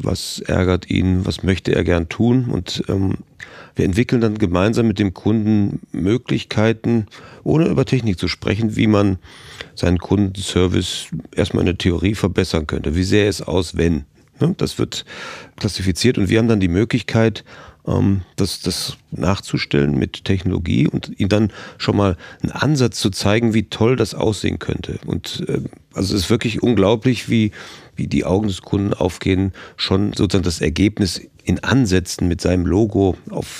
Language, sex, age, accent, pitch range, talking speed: German, male, 40-59, German, 95-110 Hz, 155 wpm